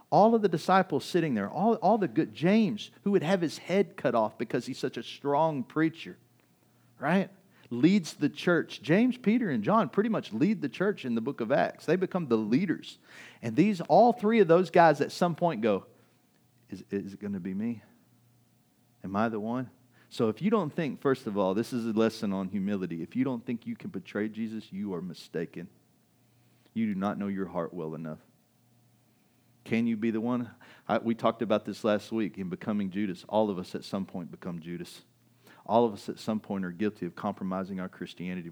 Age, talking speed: 40-59, 210 wpm